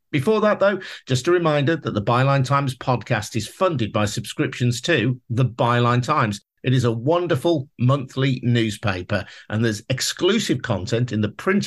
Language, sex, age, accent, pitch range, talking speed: English, male, 50-69, British, 105-145 Hz, 165 wpm